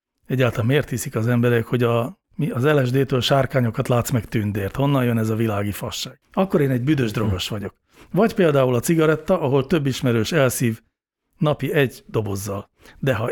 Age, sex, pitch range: 60-79, male, 120-145 Hz